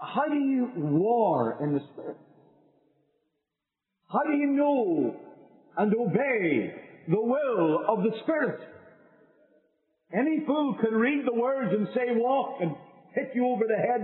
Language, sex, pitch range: English, male, 150-245 Hz